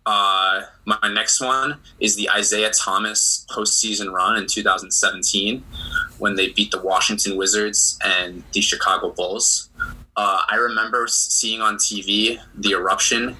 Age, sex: 20-39, male